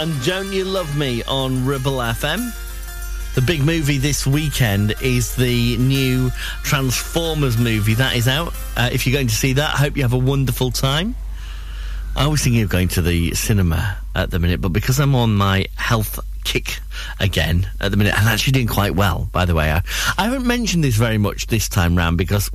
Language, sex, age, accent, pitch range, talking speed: English, male, 40-59, British, 95-130 Hz, 200 wpm